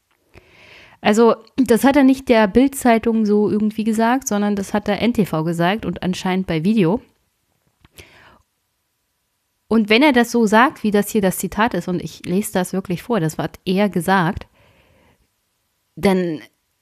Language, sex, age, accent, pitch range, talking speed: German, female, 30-49, German, 185-220 Hz, 155 wpm